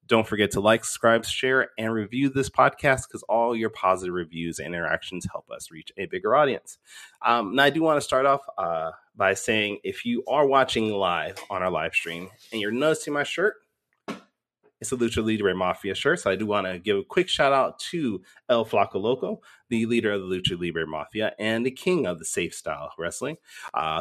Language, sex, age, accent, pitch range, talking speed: English, male, 30-49, American, 95-125 Hz, 210 wpm